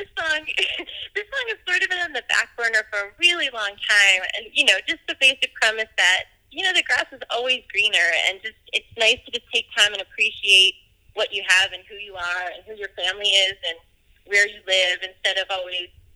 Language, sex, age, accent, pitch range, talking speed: English, female, 20-39, American, 185-230 Hz, 225 wpm